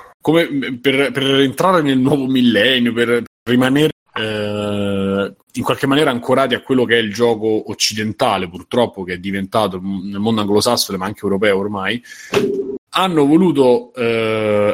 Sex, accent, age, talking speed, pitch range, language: male, native, 30-49, 150 wpm, 100-130 Hz, Italian